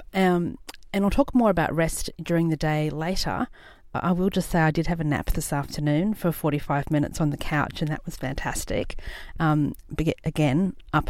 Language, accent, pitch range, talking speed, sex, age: English, Australian, 155-205 Hz, 190 wpm, female, 40-59